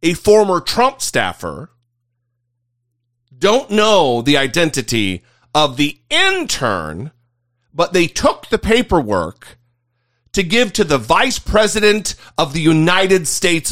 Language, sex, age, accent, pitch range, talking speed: English, male, 40-59, American, 120-190 Hz, 115 wpm